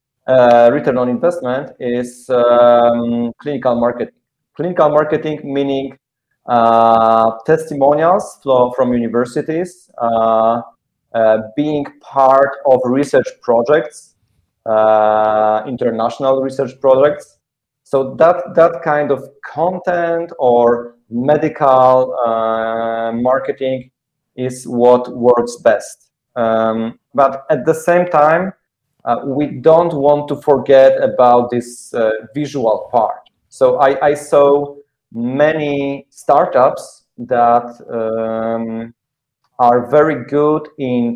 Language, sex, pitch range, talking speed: English, male, 120-145 Hz, 100 wpm